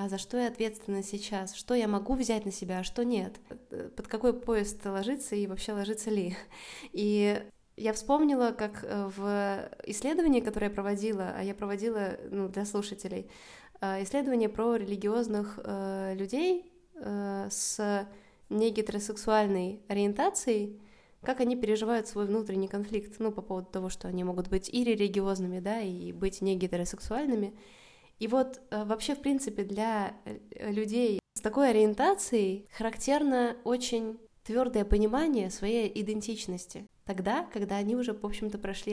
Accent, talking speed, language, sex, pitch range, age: native, 135 wpm, Russian, female, 195-220 Hz, 20-39